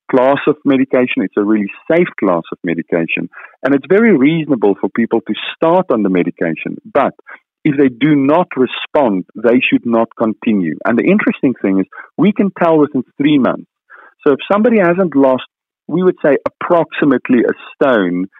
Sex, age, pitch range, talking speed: male, 40-59, 105-150 Hz, 175 wpm